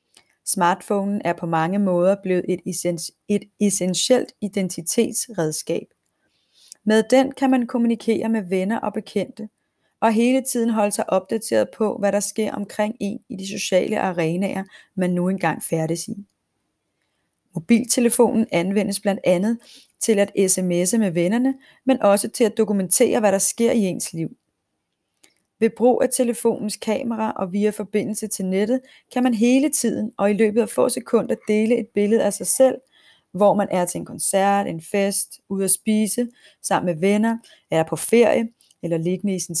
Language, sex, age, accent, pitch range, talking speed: Danish, female, 30-49, native, 190-230 Hz, 160 wpm